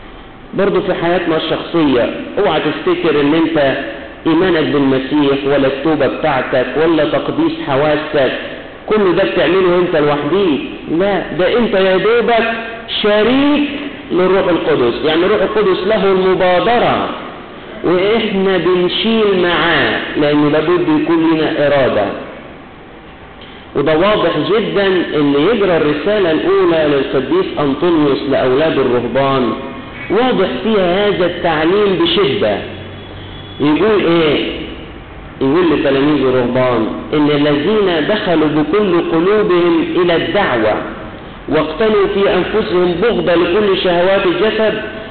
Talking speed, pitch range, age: 100 wpm, 150-220 Hz, 50-69